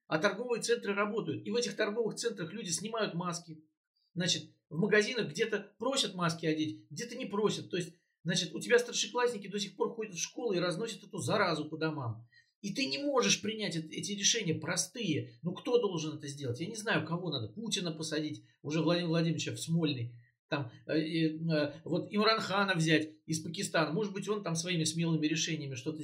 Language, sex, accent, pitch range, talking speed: Russian, male, native, 150-200 Hz, 185 wpm